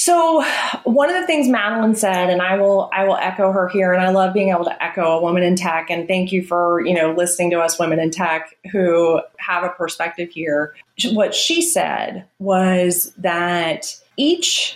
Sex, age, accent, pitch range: female, 30-49, American, 180-220 Hz